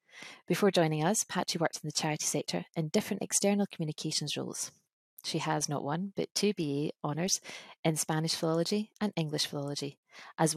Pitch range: 150-180 Hz